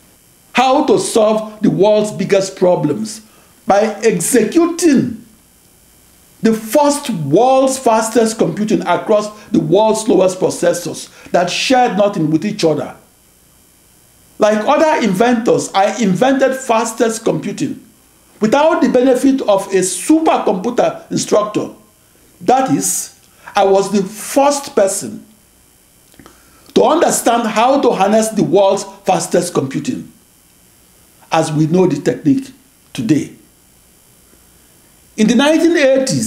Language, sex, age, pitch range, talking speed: English, male, 60-79, 185-255 Hz, 105 wpm